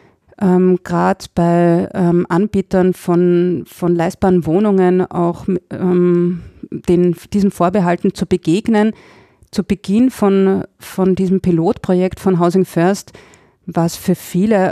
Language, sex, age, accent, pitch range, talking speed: German, female, 30-49, German, 170-190 Hz, 120 wpm